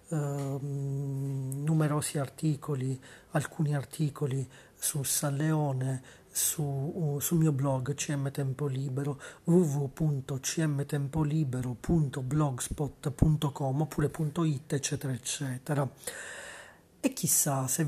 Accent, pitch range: native, 135-150 Hz